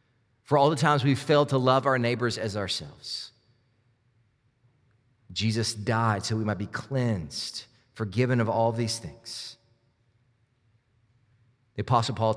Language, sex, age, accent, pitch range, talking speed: English, male, 30-49, American, 110-125 Hz, 130 wpm